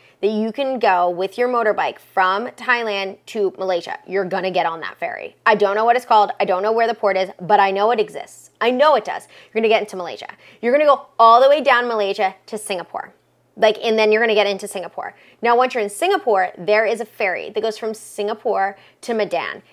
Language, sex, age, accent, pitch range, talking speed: English, female, 20-39, American, 190-230 Hz, 235 wpm